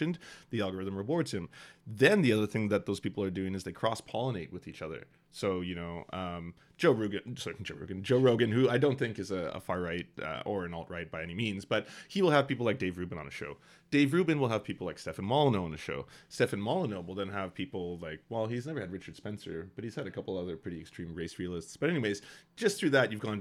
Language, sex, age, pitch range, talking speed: English, male, 30-49, 85-105 Hz, 255 wpm